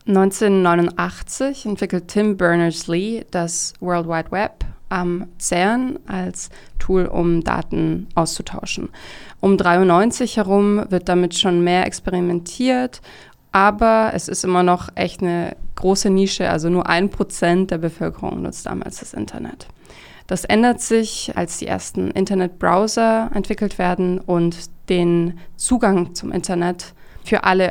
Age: 20-39